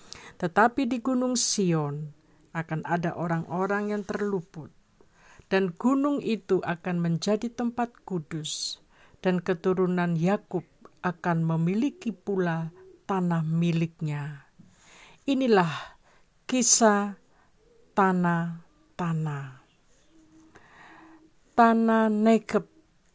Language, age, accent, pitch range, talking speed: Indonesian, 50-69, native, 165-210 Hz, 75 wpm